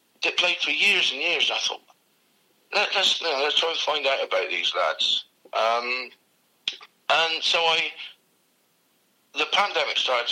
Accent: British